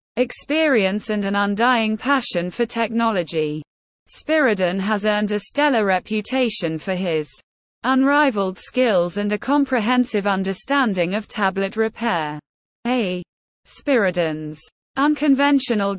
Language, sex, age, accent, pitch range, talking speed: English, female, 20-39, British, 180-245 Hz, 100 wpm